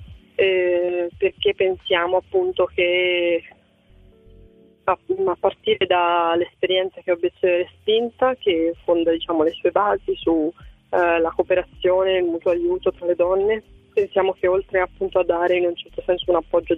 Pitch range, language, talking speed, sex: 170-190 Hz, Italian, 140 wpm, female